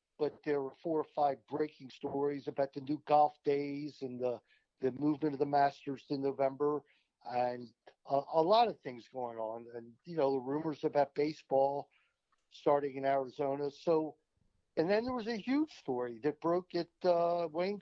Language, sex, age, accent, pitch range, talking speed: English, male, 50-69, American, 135-175 Hz, 180 wpm